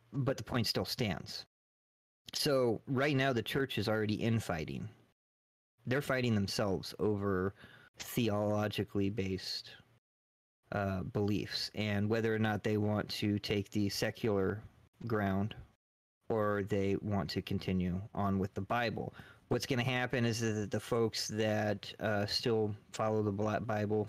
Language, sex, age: English, male, 30-49